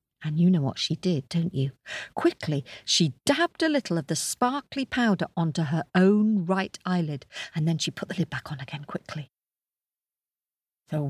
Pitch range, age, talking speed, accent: 155-225 Hz, 50-69, 180 wpm, British